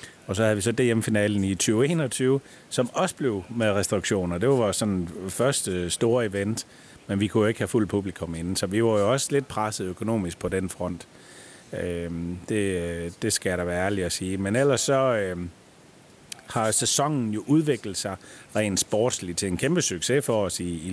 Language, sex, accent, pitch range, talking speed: Danish, male, native, 95-120 Hz, 200 wpm